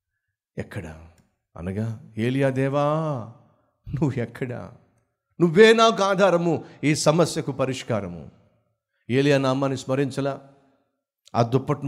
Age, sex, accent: 50-69, male, native